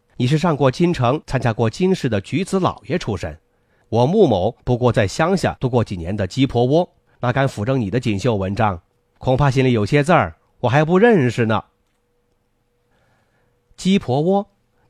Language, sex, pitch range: Chinese, male, 110-135 Hz